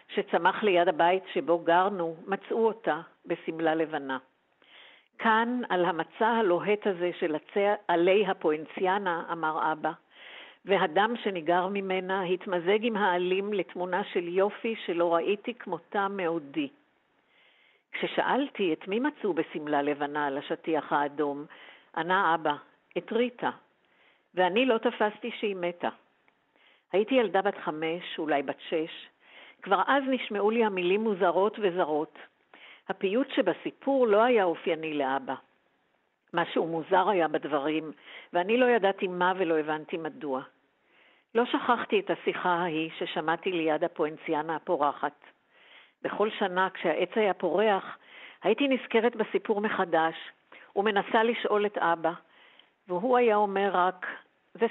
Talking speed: 120 wpm